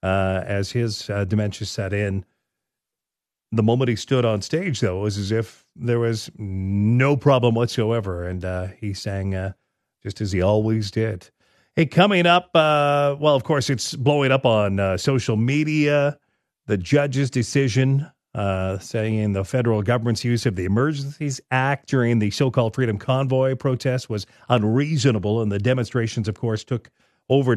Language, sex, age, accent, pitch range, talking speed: English, male, 40-59, American, 105-145 Hz, 165 wpm